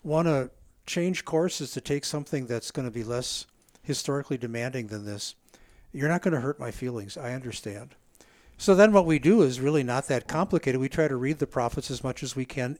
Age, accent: 50-69, American